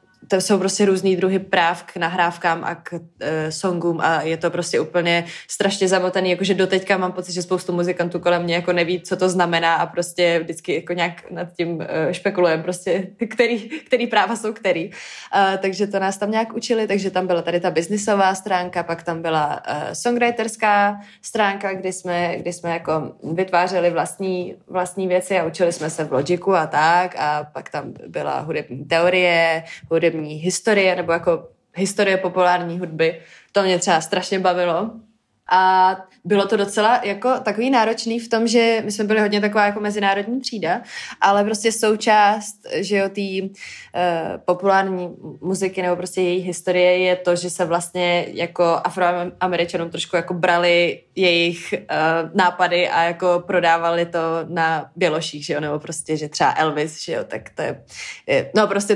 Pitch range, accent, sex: 170-195 Hz, native, female